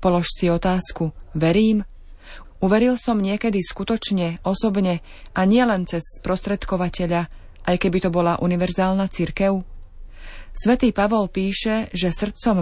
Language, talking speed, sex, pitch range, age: Slovak, 115 wpm, female, 175-215 Hz, 30-49